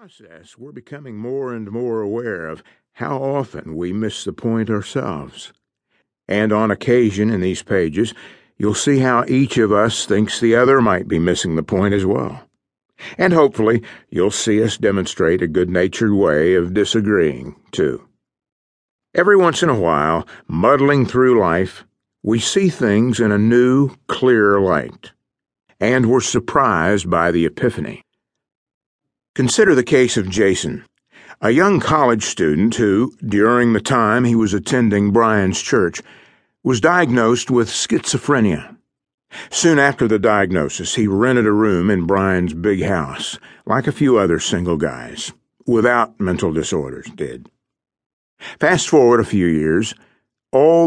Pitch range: 100-125 Hz